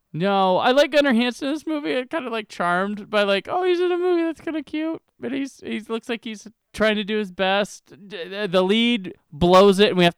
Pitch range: 140-195 Hz